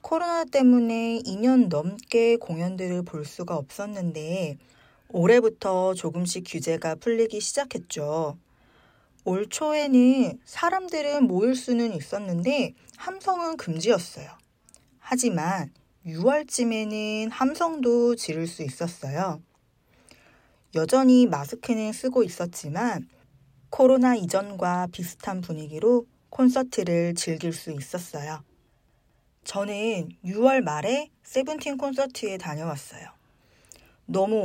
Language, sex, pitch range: Korean, female, 165-250 Hz